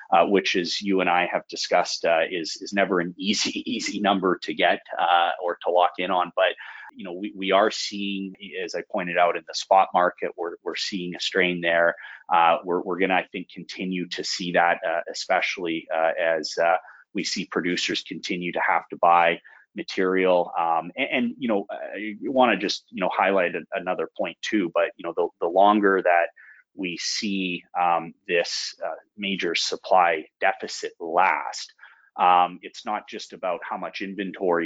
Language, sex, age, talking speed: English, male, 30-49, 190 wpm